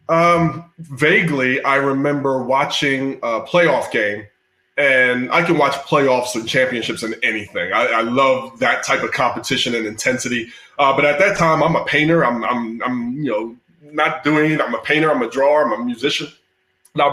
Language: English